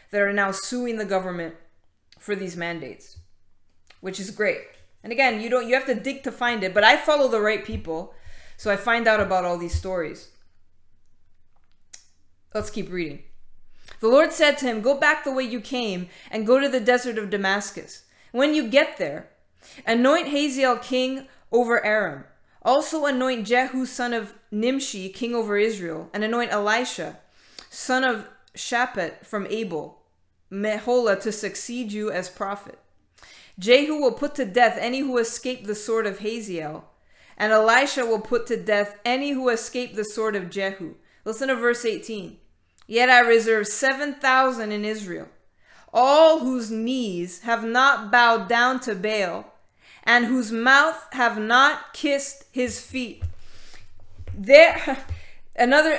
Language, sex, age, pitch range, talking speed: English, female, 20-39, 195-255 Hz, 155 wpm